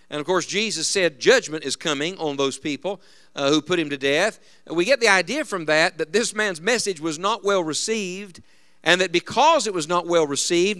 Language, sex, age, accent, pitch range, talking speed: English, male, 50-69, American, 155-210 Hz, 215 wpm